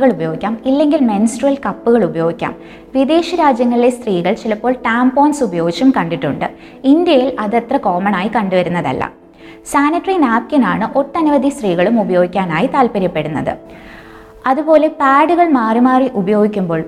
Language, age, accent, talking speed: Malayalam, 20-39, native, 105 wpm